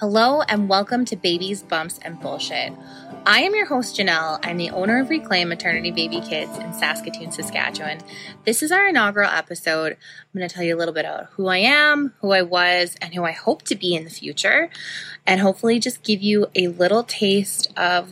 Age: 20-39